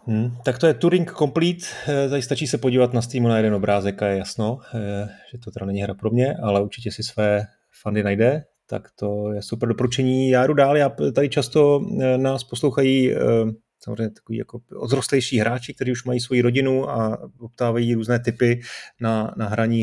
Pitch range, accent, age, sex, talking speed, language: 105-125 Hz, native, 30-49, male, 180 wpm, Czech